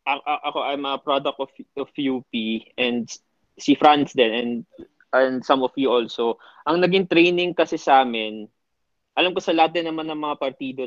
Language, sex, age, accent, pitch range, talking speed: Filipino, male, 20-39, native, 130-150 Hz, 160 wpm